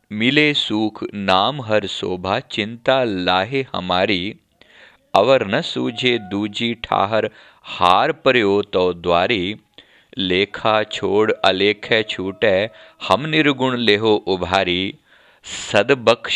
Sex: male